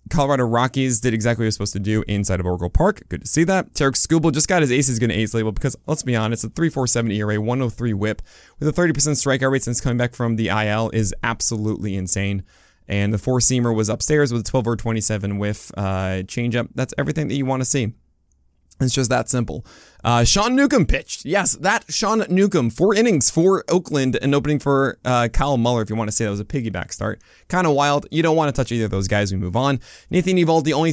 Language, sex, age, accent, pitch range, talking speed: English, male, 20-39, American, 105-145 Hz, 240 wpm